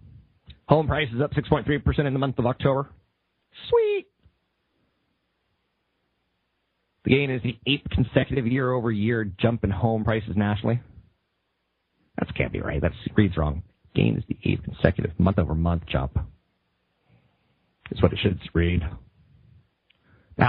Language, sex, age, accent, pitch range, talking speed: English, male, 40-59, American, 95-125 Hz, 125 wpm